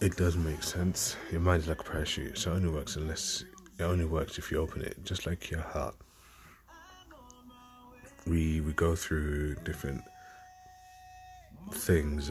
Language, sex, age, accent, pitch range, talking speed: English, male, 30-49, British, 75-95 Hz, 155 wpm